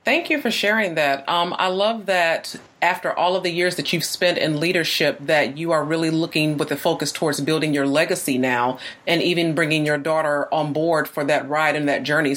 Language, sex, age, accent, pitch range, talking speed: English, female, 30-49, American, 150-190 Hz, 220 wpm